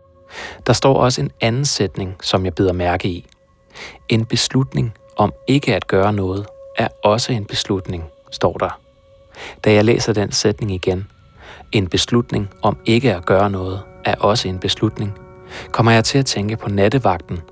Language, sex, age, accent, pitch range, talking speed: Danish, male, 30-49, native, 95-120 Hz, 165 wpm